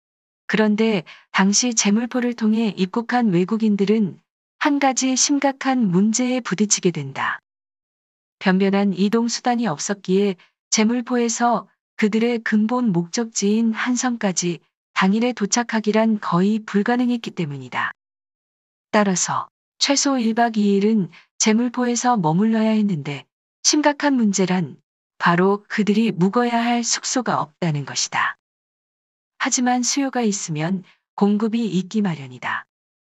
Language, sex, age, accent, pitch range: Korean, female, 40-59, native, 190-245 Hz